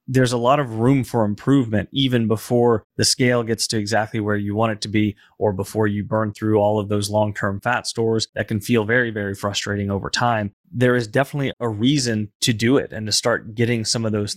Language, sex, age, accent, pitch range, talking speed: English, male, 30-49, American, 105-125 Hz, 225 wpm